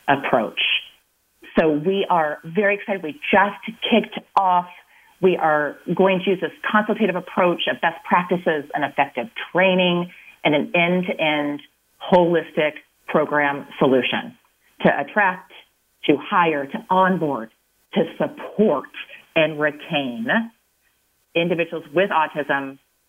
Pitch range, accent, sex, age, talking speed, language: 155-210 Hz, American, female, 30-49, 110 wpm, English